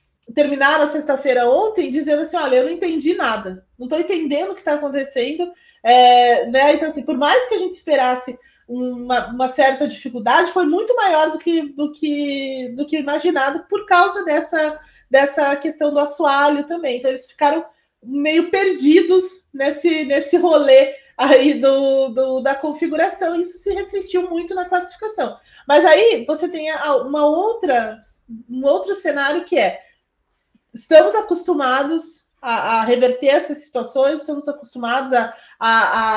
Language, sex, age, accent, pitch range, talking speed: Portuguese, female, 30-49, Brazilian, 270-335 Hz, 155 wpm